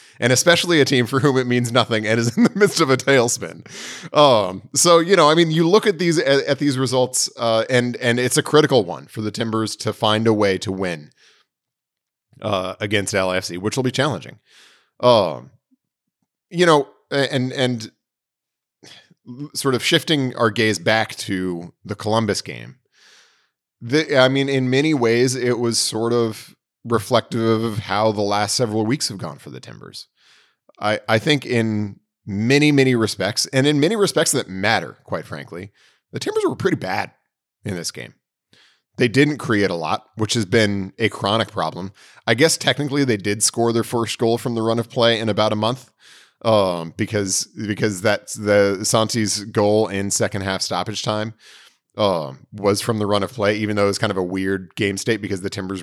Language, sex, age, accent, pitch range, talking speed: English, male, 30-49, American, 105-135 Hz, 190 wpm